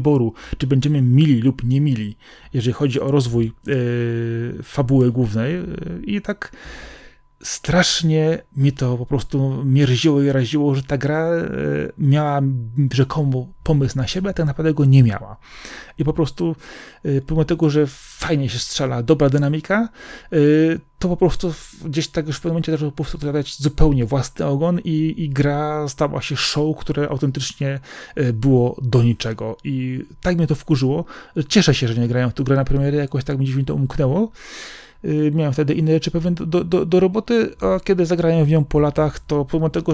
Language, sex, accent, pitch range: Polish, male, native, 130-160 Hz